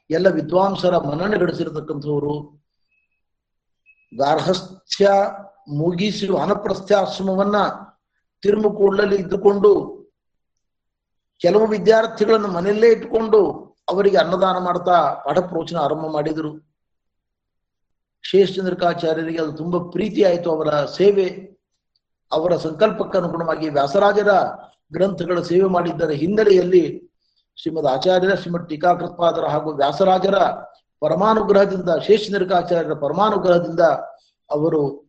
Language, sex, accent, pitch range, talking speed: Kannada, male, native, 155-200 Hz, 80 wpm